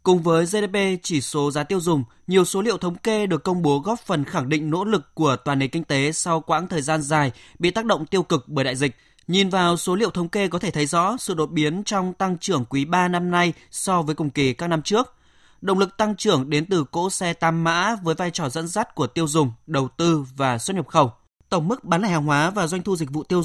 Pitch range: 145-185 Hz